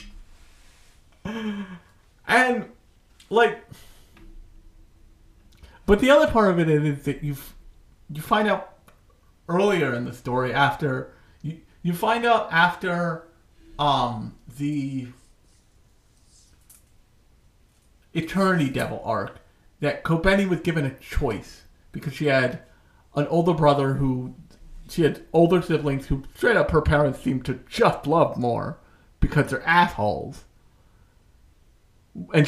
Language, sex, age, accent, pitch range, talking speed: English, male, 40-59, American, 125-175 Hz, 110 wpm